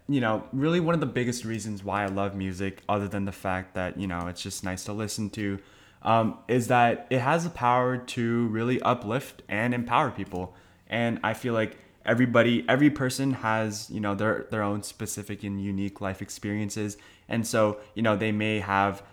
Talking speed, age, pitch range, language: 200 wpm, 20-39, 100-120 Hz, English